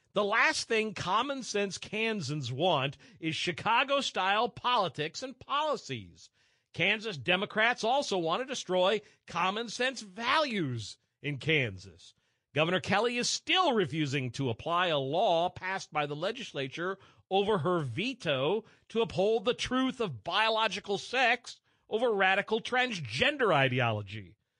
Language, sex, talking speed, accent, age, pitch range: English, male, 115 wpm, American, 50-69, 150-245 Hz